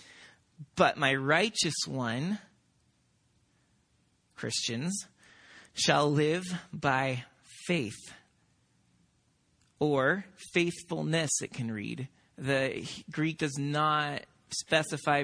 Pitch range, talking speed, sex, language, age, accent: 145-210 Hz, 75 wpm, male, English, 30-49, American